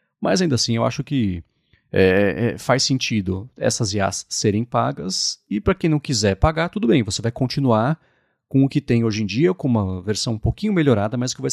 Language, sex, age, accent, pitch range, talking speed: Portuguese, male, 30-49, Brazilian, 105-140 Hz, 205 wpm